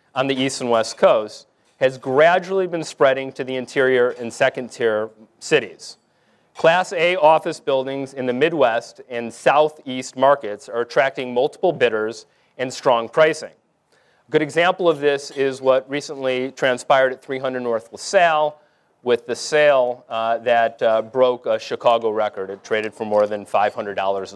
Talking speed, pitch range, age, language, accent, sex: 155 wpm, 120-155 Hz, 30-49, English, American, male